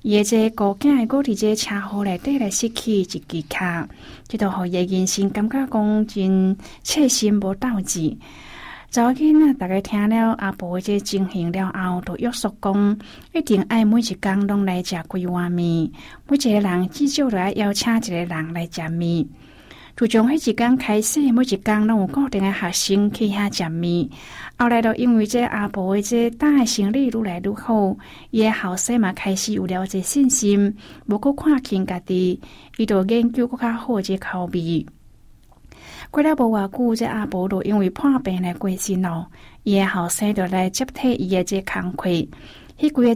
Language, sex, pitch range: Chinese, female, 185-235 Hz